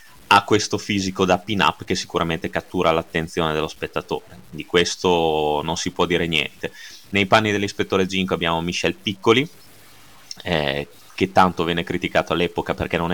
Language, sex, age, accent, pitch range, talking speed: Italian, male, 30-49, native, 85-105 Hz, 155 wpm